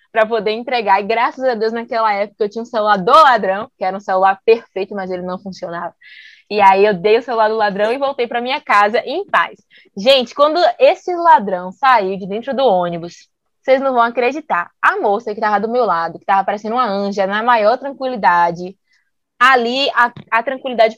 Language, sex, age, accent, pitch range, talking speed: Portuguese, female, 20-39, Brazilian, 205-265 Hz, 205 wpm